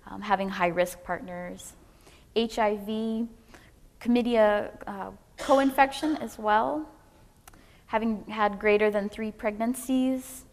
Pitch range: 190-230 Hz